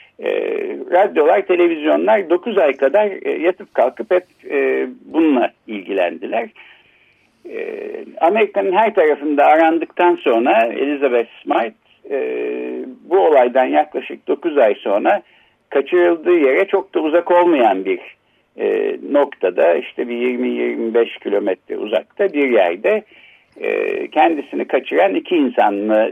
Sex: male